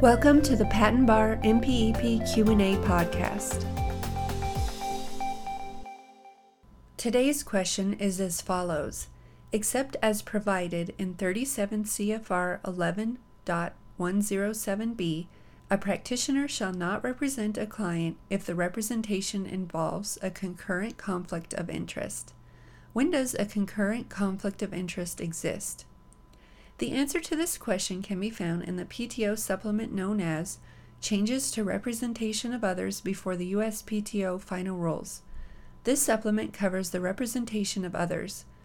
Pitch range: 180-225 Hz